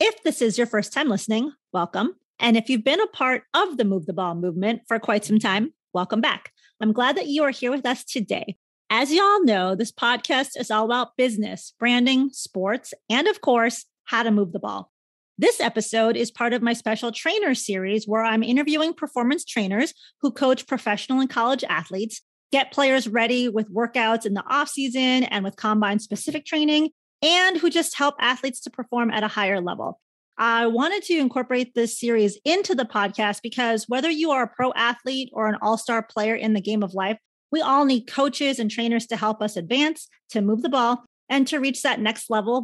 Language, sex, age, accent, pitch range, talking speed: English, female, 30-49, American, 220-280 Hz, 205 wpm